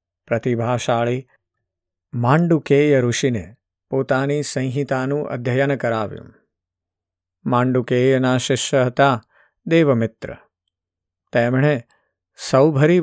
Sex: male